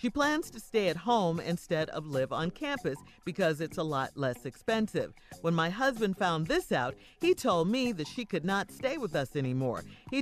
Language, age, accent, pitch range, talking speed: English, 50-69, American, 165-245 Hz, 205 wpm